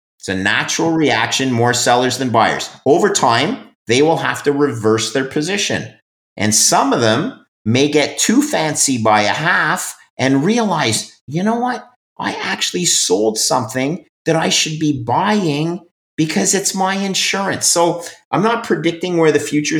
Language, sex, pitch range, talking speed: English, male, 110-150 Hz, 160 wpm